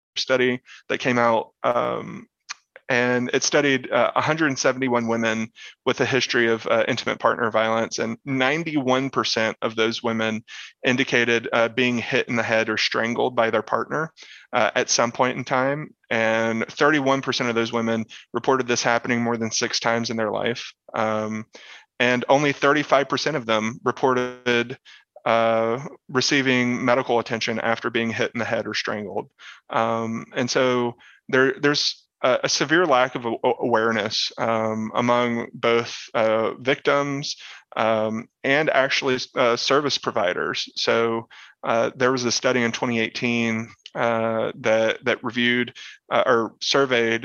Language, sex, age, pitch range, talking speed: English, male, 30-49, 115-130 Hz, 145 wpm